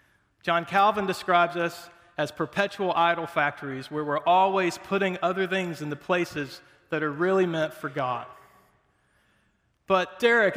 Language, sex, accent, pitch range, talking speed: English, male, American, 150-190 Hz, 140 wpm